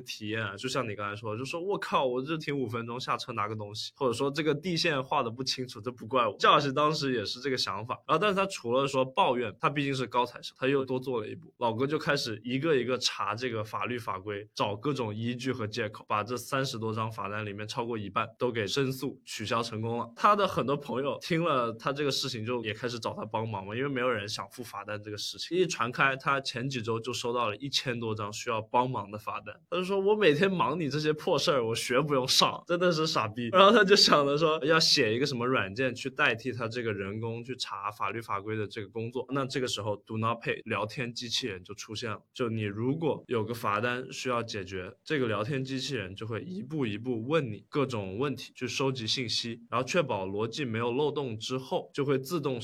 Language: Chinese